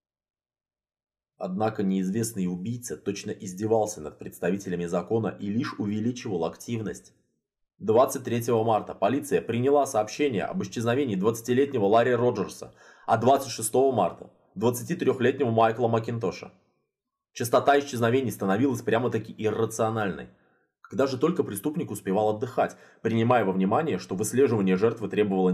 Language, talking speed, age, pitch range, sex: Russian, 110 wpm, 20-39, 100-125 Hz, male